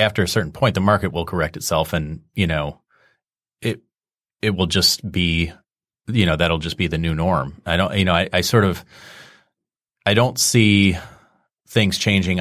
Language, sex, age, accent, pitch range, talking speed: English, male, 30-49, American, 80-100 Hz, 185 wpm